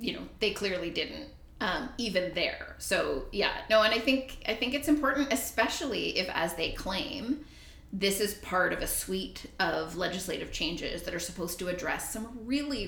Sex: female